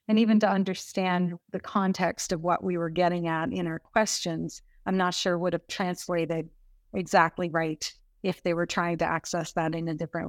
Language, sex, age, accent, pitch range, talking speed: English, female, 30-49, American, 175-205 Hz, 190 wpm